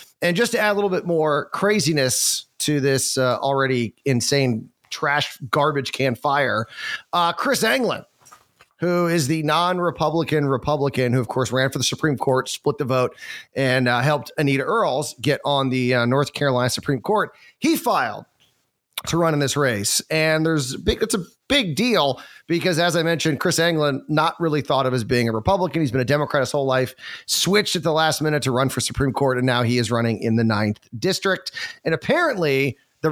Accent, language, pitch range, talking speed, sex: American, English, 130-170 Hz, 195 wpm, male